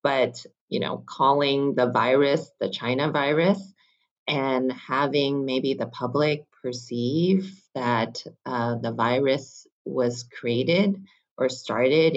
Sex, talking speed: female, 115 wpm